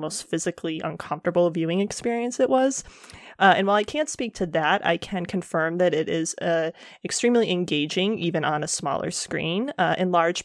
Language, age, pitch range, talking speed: English, 20-39, 165-200 Hz, 185 wpm